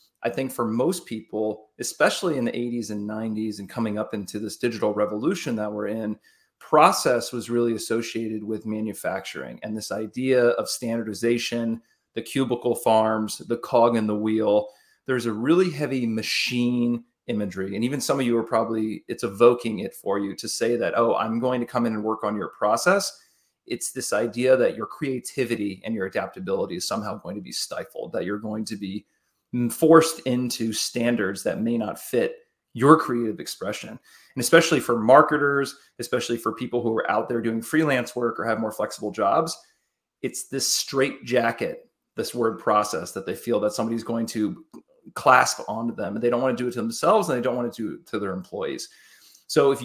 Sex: male